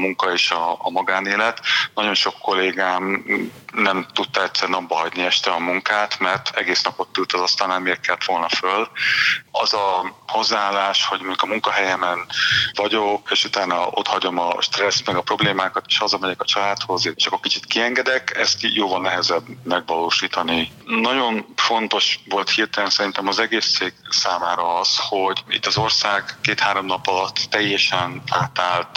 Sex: male